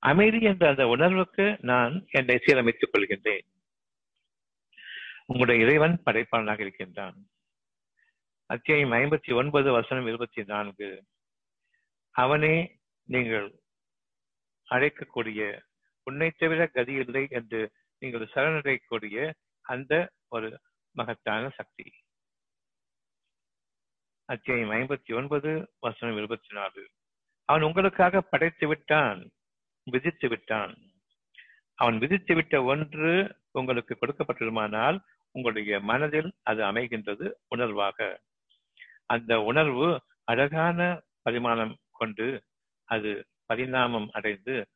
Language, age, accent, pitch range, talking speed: Tamil, 60-79, native, 115-165 Hz, 80 wpm